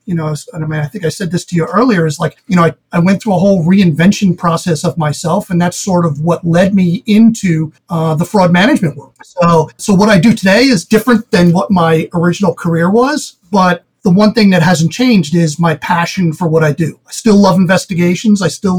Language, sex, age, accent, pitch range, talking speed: English, male, 40-59, American, 170-205 Hz, 235 wpm